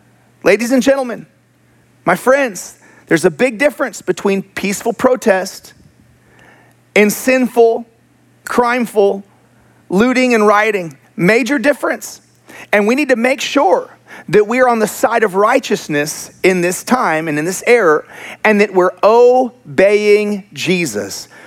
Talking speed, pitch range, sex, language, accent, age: 125 wpm, 165-235 Hz, male, English, American, 40-59